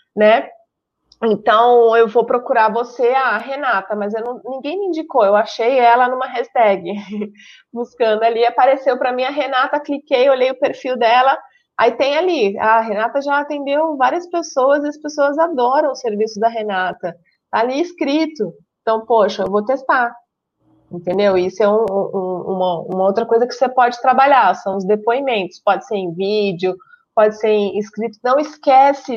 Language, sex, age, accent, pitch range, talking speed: Portuguese, female, 30-49, Brazilian, 195-255 Hz, 165 wpm